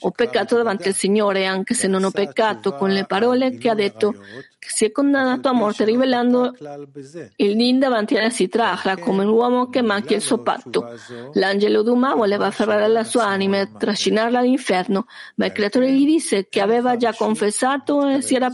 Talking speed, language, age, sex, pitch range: 190 wpm, Italian, 50-69, female, 205-255 Hz